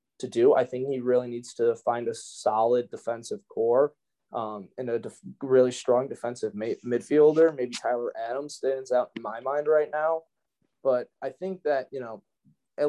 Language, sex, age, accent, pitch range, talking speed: English, male, 20-39, American, 120-145 Hz, 180 wpm